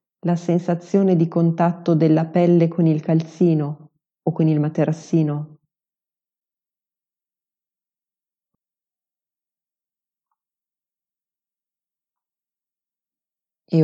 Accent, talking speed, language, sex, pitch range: native, 60 wpm, Italian, female, 155-175 Hz